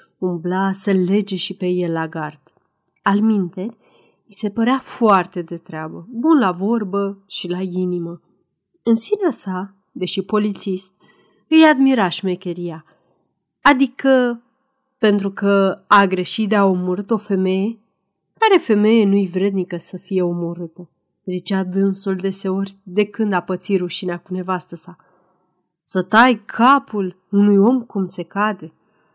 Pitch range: 185-230 Hz